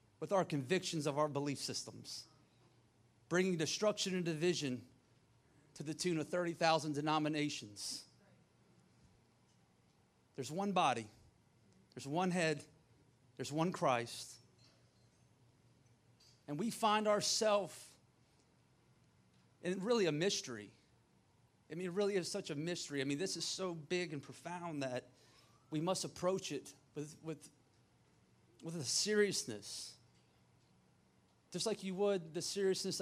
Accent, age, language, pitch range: American, 30-49, English, 125-170 Hz